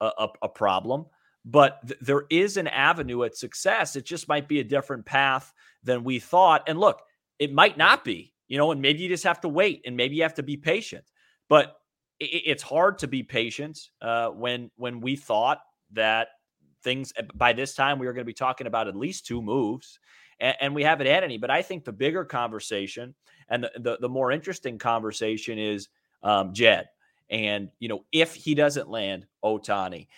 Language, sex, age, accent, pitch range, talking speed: English, male, 30-49, American, 120-150 Hz, 195 wpm